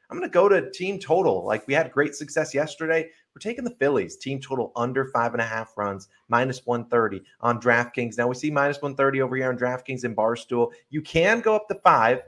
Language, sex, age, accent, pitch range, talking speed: English, male, 30-49, American, 115-155 Hz, 230 wpm